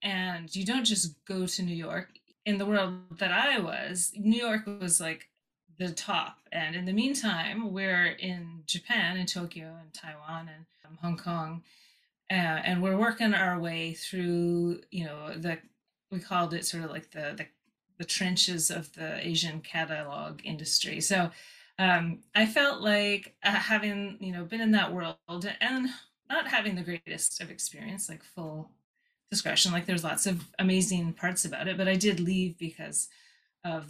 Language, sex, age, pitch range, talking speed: English, female, 30-49, 165-195 Hz, 170 wpm